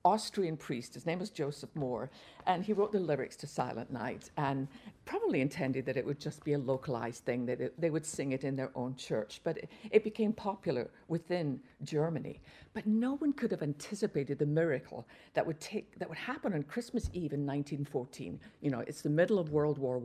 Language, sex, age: English, female, 50-69